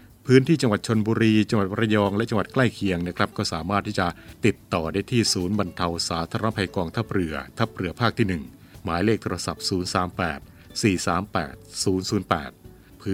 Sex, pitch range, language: male, 90-110 Hz, Thai